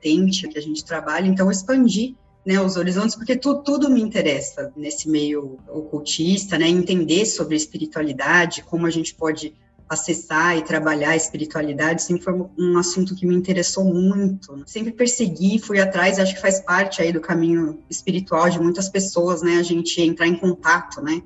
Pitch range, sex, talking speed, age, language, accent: 165-195 Hz, female, 170 wpm, 20-39, Portuguese, Brazilian